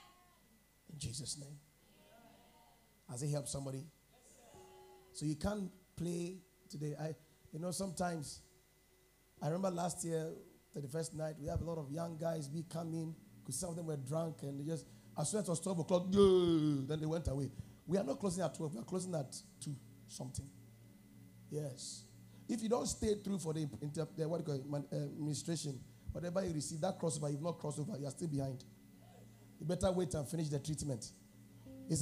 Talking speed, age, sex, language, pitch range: 180 wpm, 30-49, male, English, 140-180 Hz